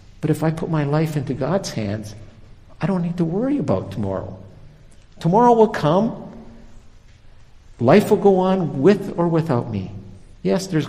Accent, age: American, 60-79